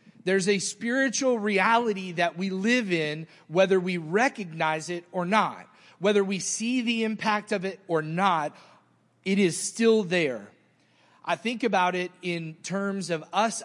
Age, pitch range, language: 30-49, 155-205 Hz, English